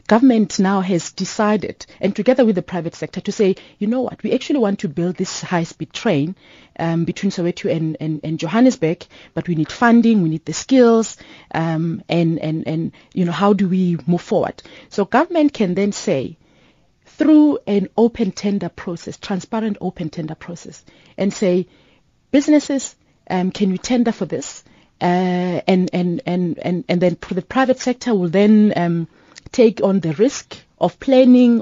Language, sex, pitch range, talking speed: English, female, 175-235 Hz, 175 wpm